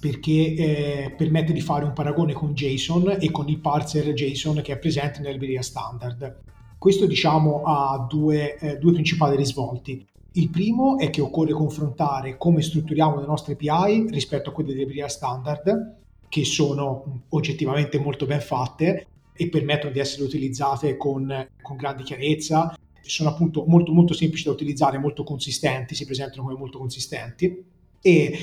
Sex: male